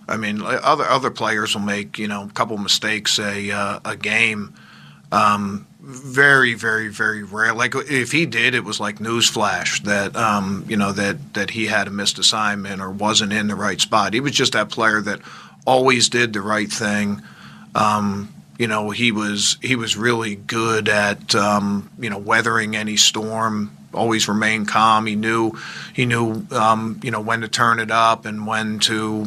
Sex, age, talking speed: male, 40-59, 185 wpm